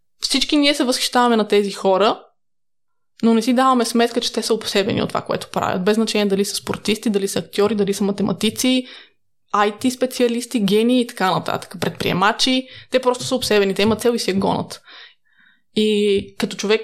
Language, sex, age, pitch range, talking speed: Bulgarian, female, 20-39, 200-235 Hz, 185 wpm